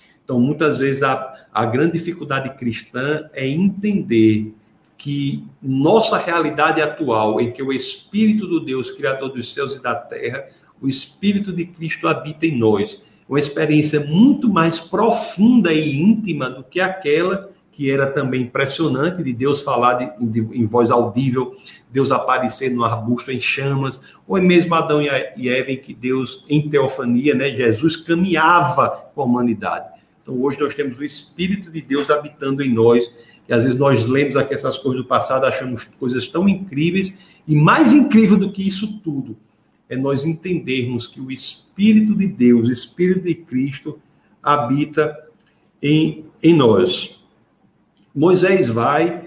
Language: Portuguese